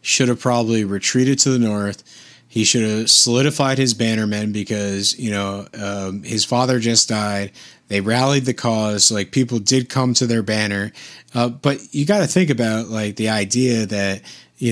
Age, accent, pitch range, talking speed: 30-49, American, 100-120 Hz, 180 wpm